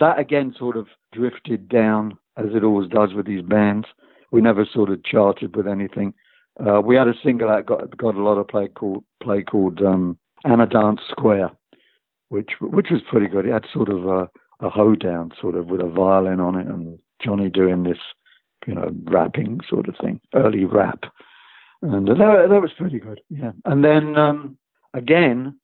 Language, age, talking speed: English, 60-79, 190 wpm